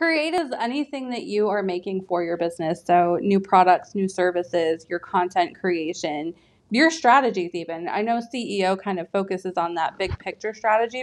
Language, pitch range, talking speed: English, 185-235 Hz, 175 wpm